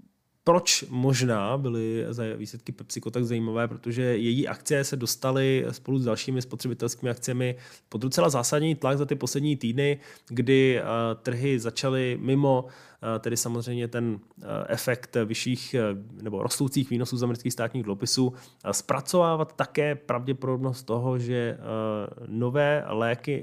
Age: 20-39